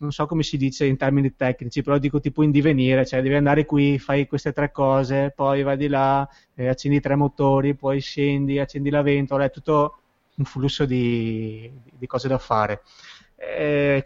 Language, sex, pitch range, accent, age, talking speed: Italian, male, 125-145 Hz, native, 20-39, 190 wpm